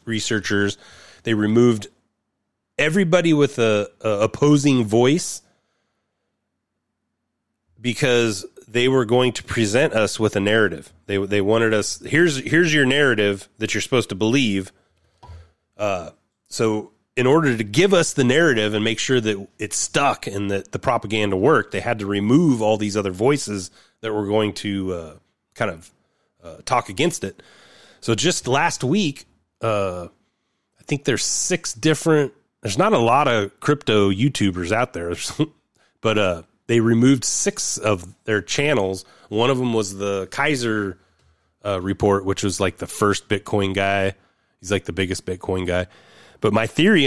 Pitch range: 95-120 Hz